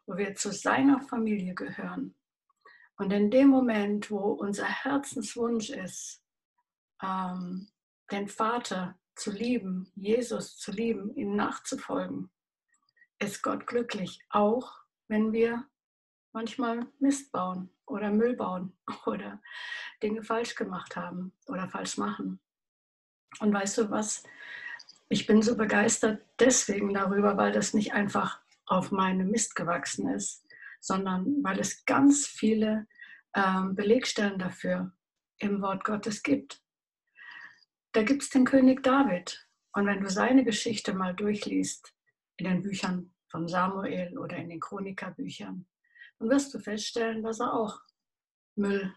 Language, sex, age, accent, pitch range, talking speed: German, female, 60-79, German, 195-240 Hz, 125 wpm